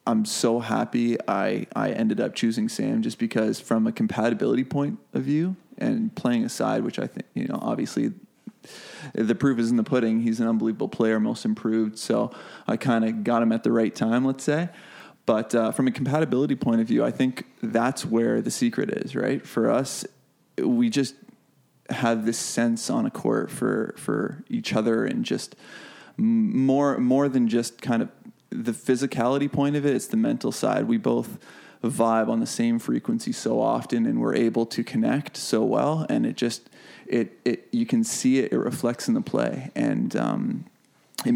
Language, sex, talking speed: English, male, 190 wpm